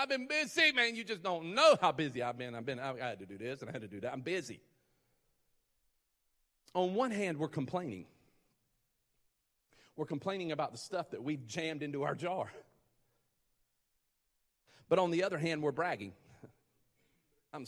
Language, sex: English, male